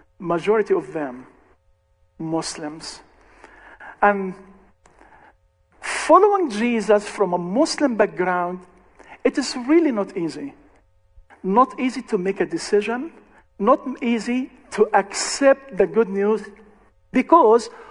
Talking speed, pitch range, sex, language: 100 wpm, 170-260 Hz, male, English